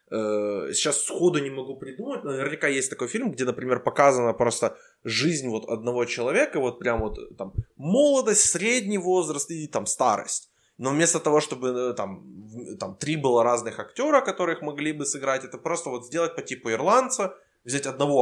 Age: 20-39